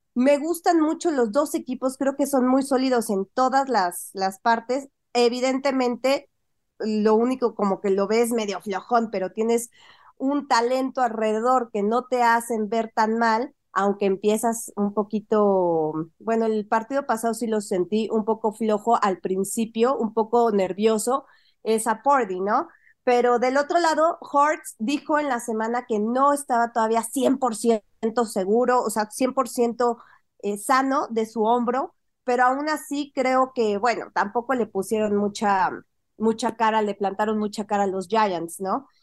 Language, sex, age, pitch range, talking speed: Spanish, female, 30-49, 220-265 Hz, 155 wpm